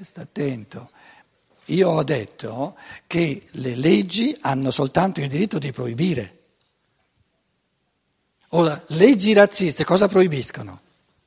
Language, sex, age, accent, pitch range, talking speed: Italian, male, 60-79, native, 150-230 Hz, 100 wpm